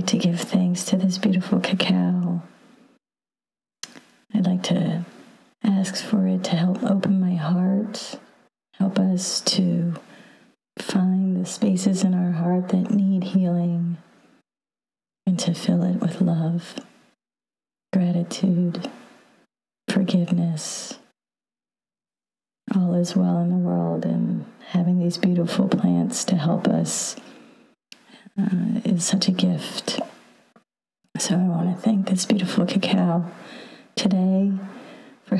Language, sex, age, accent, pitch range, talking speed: English, female, 40-59, American, 180-225 Hz, 115 wpm